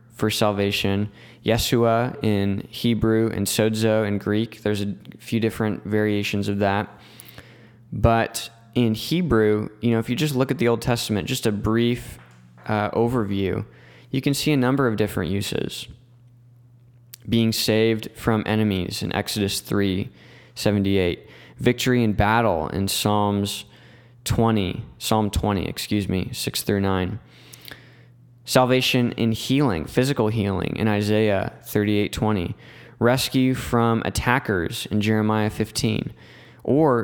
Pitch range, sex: 105-120 Hz, male